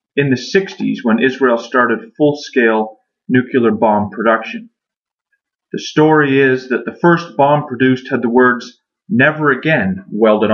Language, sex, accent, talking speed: English, male, American, 135 wpm